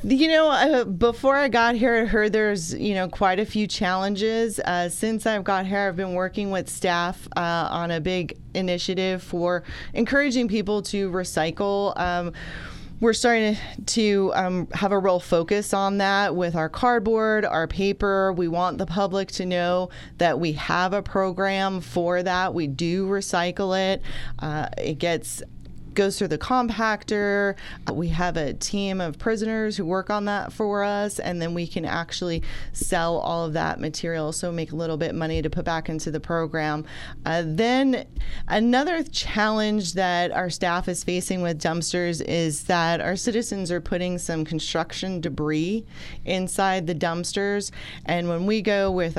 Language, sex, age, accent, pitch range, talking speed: English, female, 30-49, American, 170-205 Hz, 170 wpm